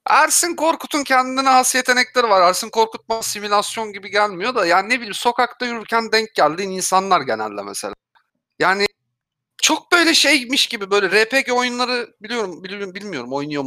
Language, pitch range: Turkish, 155-235 Hz